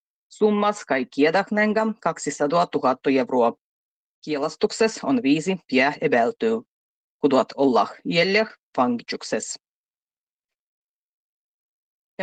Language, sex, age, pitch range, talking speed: Finnish, female, 30-49, 150-225 Hz, 75 wpm